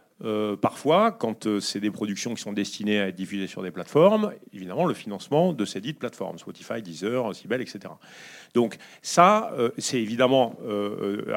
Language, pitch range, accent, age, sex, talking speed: French, 105-160 Hz, French, 40-59, male, 175 wpm